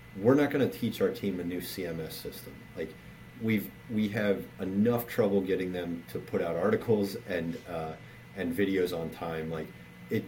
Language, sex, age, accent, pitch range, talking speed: English, male, 30-49, American, 85-100 Hz, 180 wpm